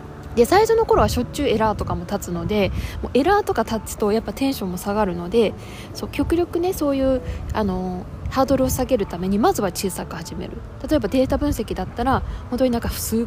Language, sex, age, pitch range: Japanese, female, 20-39, 210-295 Hz